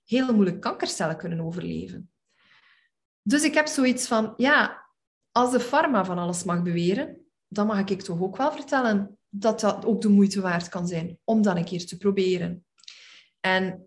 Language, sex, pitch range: Dutch, female, 200-255 Hz